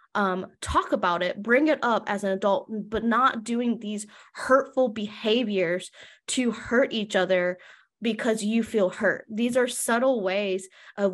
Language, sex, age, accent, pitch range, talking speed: English, female, 20-39, American, 195-235 Hz, 155 wpm